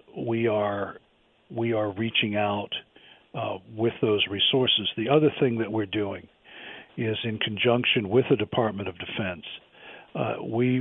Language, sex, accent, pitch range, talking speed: English, male, American, 100-115 Hz, 145 wpm